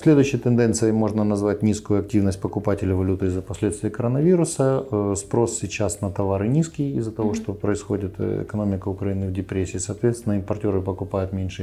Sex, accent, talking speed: male, native, 145 wpm